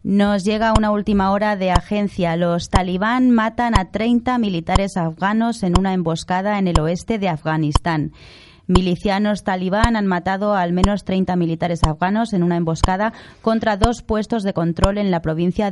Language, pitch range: Spanish, 170-205 Hz